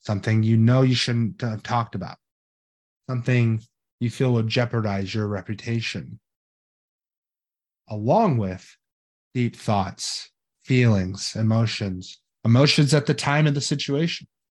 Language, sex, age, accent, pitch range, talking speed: English, male, 30-49, American, 105-125 Hz, 115 wpm